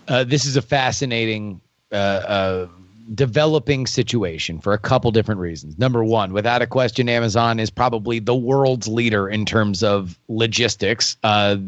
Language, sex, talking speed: English, male, 155 wpm